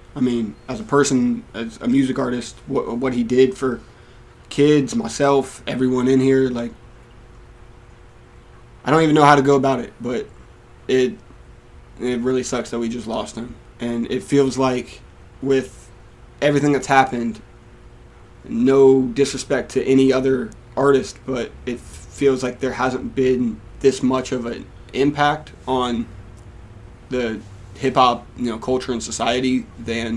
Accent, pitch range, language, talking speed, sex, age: American, 115-130 Hz, English, 145 wpm, male, 20-39